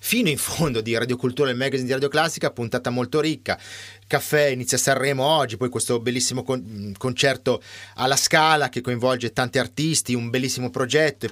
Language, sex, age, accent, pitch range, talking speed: Italian, male, 30-49, native, 115-145 Hz, 180 wpm